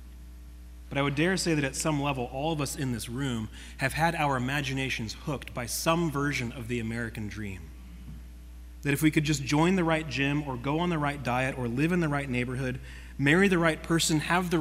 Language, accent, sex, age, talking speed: English, American, male, 30-49, 220 wpm